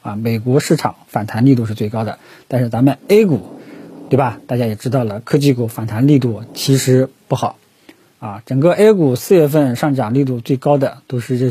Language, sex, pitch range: Chinese, male, 120-150 Hz